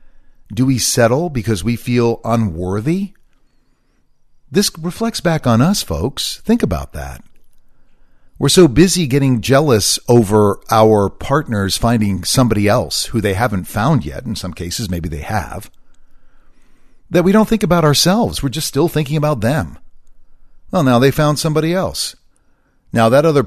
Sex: male